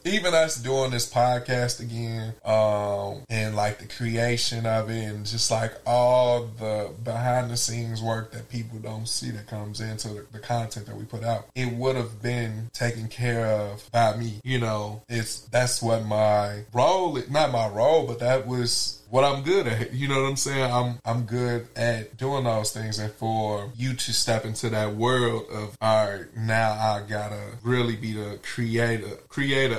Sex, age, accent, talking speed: male, 20-39, American, 180 wpm